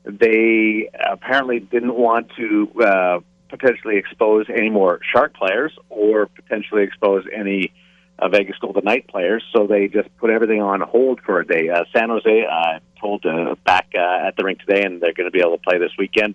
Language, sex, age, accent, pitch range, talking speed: English, male, 50-69, American, 95-135 Hz, 200 wpm